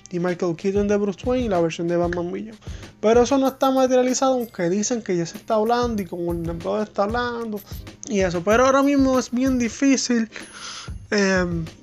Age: 20-39